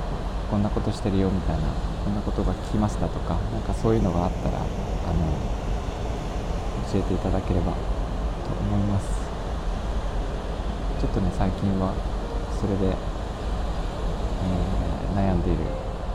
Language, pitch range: Japanese, 85-105 Hz